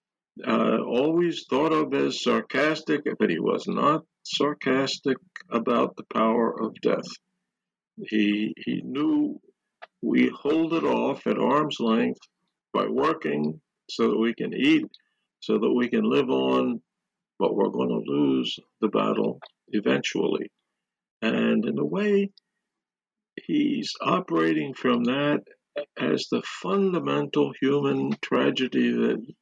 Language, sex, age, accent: English, male, 50-69, American